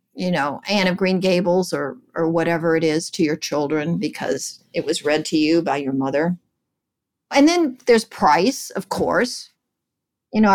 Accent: American